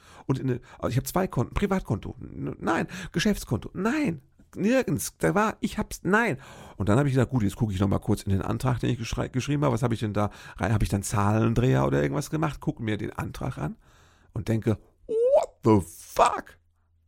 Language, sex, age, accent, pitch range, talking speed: German, male, 50-69, German, 85-125 Hz, 205 wpm